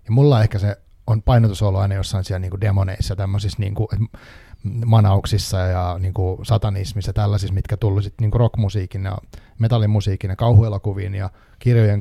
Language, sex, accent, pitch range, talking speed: Finnish, male, native, 100-115 Hz, 150 wpm